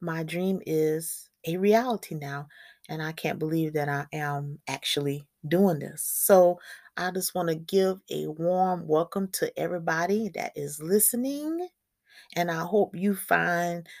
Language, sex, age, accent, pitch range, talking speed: English, female, 30-49, American, 165-205 Hz, 150 wpm